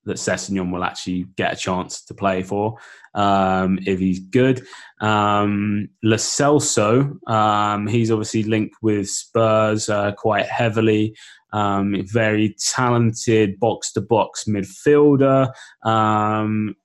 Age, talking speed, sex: 20-39, 120 wpm, male